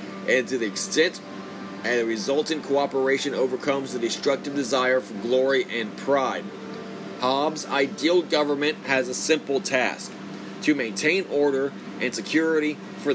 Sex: male